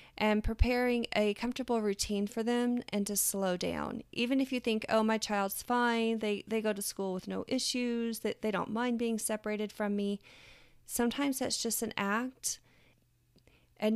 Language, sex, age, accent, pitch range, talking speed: English, female, 30-49, American, 185-230 Hz, 170 wpm